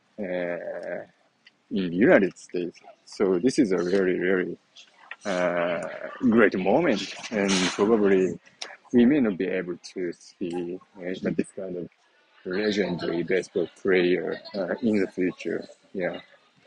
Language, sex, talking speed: English, male, 125 wpm